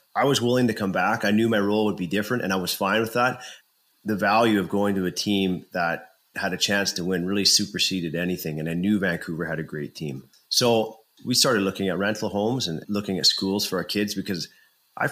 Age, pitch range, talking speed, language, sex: 30-49, 85-105 Hz, 235 wpm, English, male